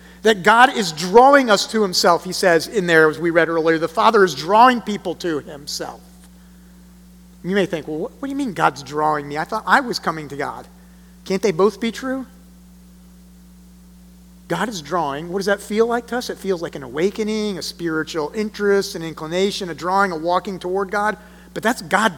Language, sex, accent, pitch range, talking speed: English, male, American, 135-200 Hz, 200 wpm